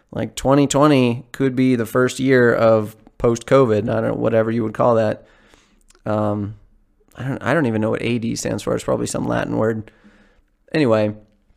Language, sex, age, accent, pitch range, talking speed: English, male, 30-49, American, 110-130 Hz, 180 wpm